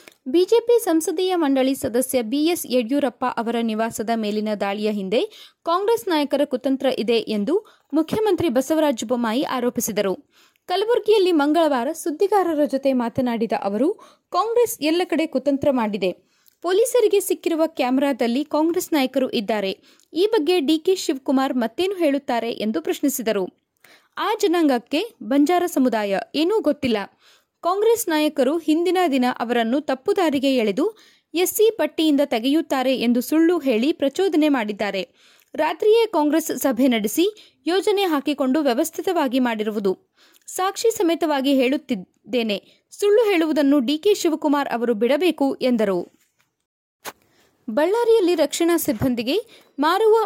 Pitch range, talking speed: 250-350 Hz, 105 wpm